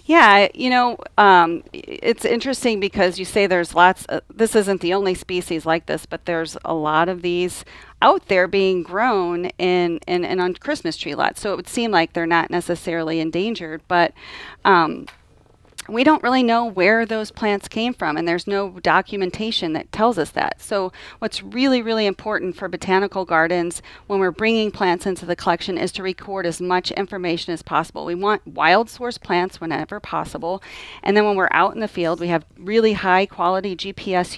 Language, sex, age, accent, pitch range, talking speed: English, female, 40-59, American, 175-205 Hz, 190 wpm